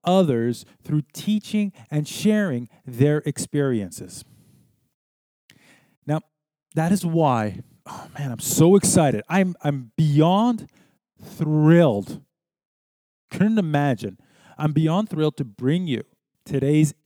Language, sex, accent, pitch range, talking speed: English, male, American, 130-185 Hz, 100 wpm